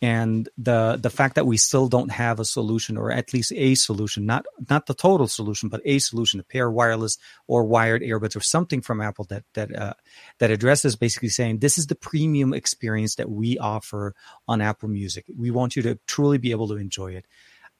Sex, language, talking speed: male, English, 210 wpm